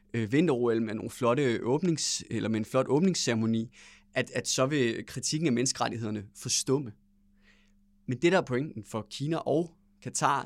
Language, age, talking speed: English, 20-39, 155 wpm